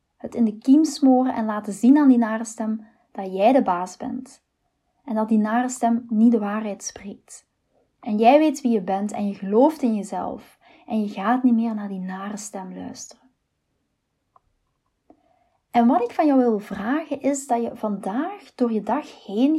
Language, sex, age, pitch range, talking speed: Dutch, female, 20-39, 210-260 Hz, 190 wpm